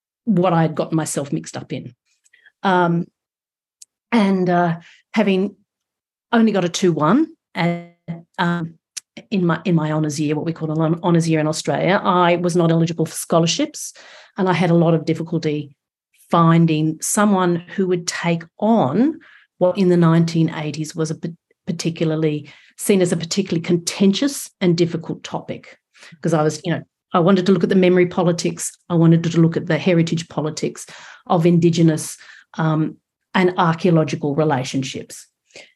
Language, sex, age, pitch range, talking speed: English, female, 40-59, 160-190 Hz, 155 wpm